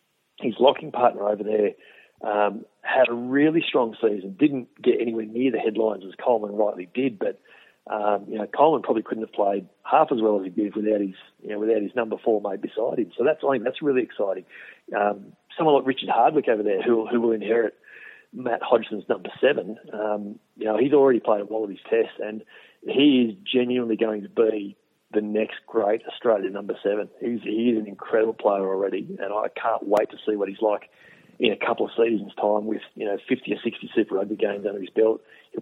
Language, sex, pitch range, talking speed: English, male, 105-125 Hz, 215 wpm